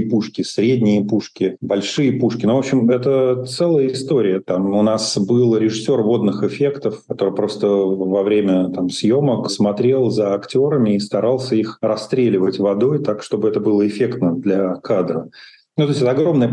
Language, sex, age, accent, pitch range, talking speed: Russian, male, 40-59, native, 100-125 Hz, 155 wpm